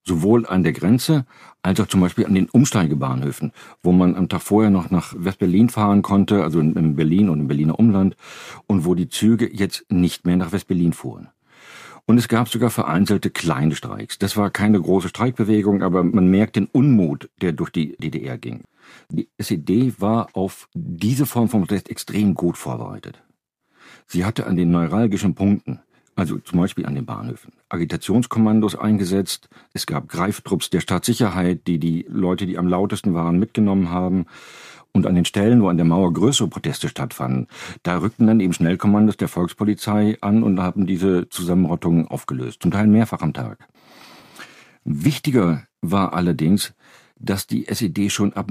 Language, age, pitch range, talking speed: German, 50-69, 85-105 Hz, 170 wpm